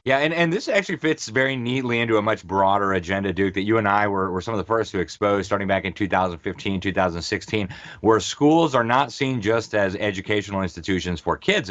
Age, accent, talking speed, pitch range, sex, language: 30-49, American, 215 wpm, 100-130 Hz, male, English